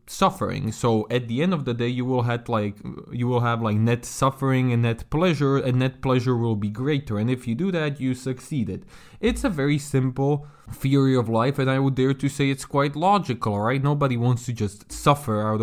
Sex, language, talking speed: male, English, 225 wpm